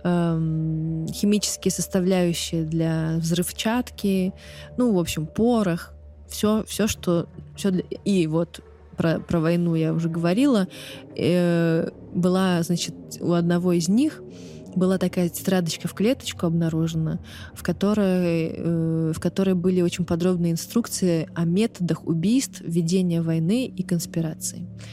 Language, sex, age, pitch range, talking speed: Russian, female, 20-39, 165-190 Hz, 110 wpm